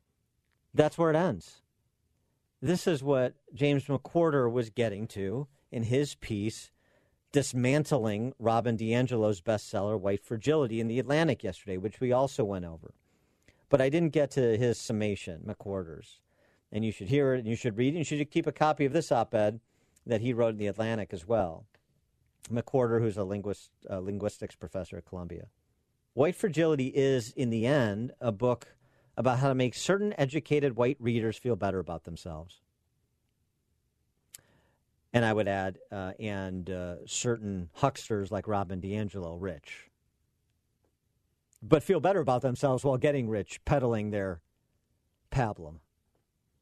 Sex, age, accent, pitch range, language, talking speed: male, 50-69, American, 105-140 Hz, English, 150 wpm